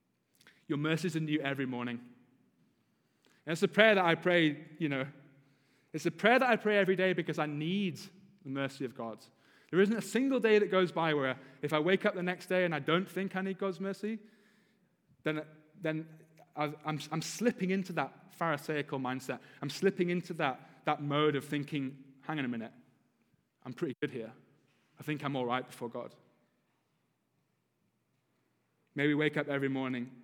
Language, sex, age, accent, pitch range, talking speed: English, male, 30-49, British, 125-155 Hz, 185 wpm